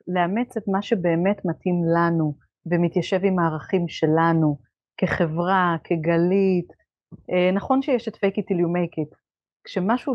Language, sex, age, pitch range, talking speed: Hebrew, female, 30-49, 175-210 Hz, 125 wpm